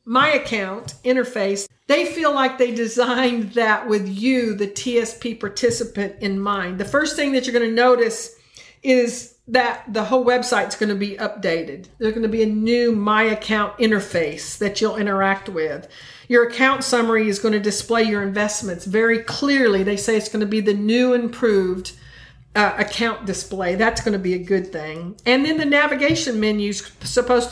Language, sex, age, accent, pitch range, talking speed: English, female, 50-69, American, 200-245 Hz, 185 wpm